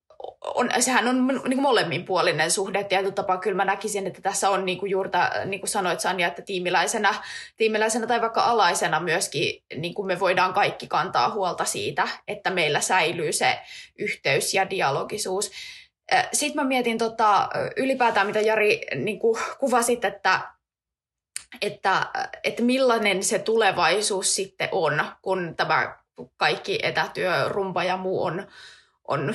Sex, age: female, 20-39